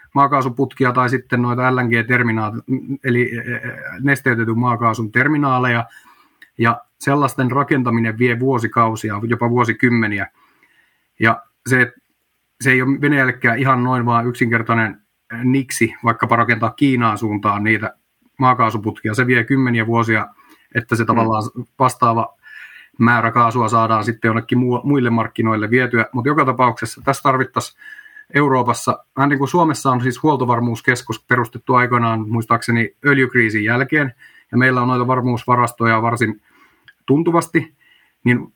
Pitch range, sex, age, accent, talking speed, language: 115-135 Hz, male, 30-49, native, 115 wpm, Finnish